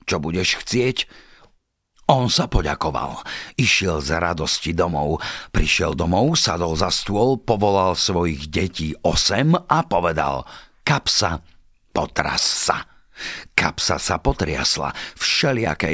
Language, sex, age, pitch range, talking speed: Slovak, male, 50-69, 80-115 Hz, 105 wpm